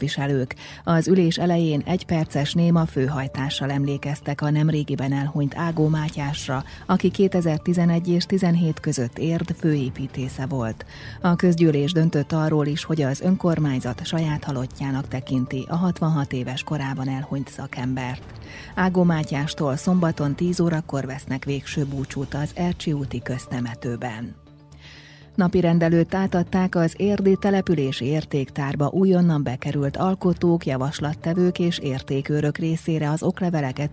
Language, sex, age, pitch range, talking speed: Hungarian, female, 30-49, 140-175 Hz, 115 wpm